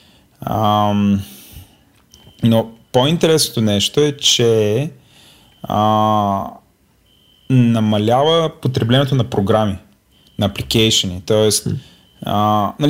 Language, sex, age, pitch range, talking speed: Bulgarian, male, 30-49, 110-135 Hz, 65 wpm